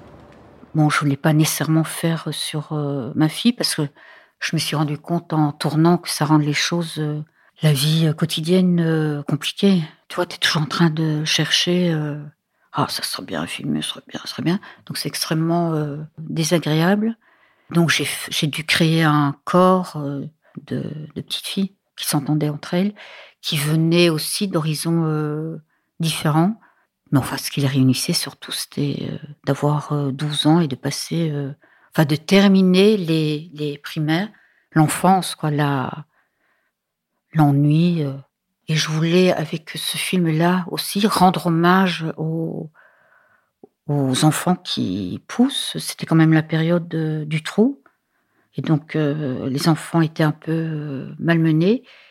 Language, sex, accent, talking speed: French, female, French, 155 wpm